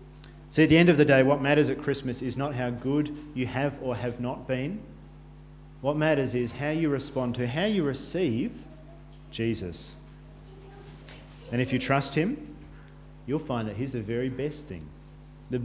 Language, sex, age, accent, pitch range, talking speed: English, male, 40-59, Australian, 110-150 Hz, 175 wpm